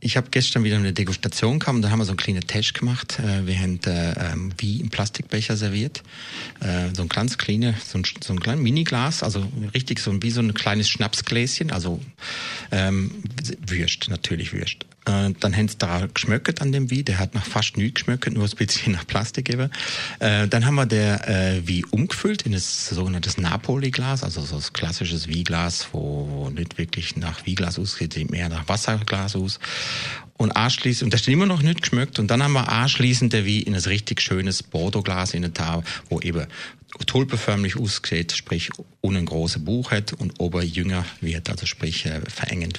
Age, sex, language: 40-59, male, German